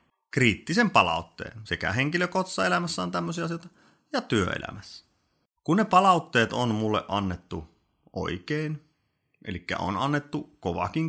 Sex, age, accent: male, 30-49, native